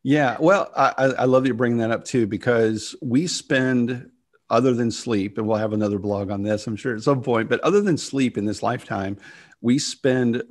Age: 40-59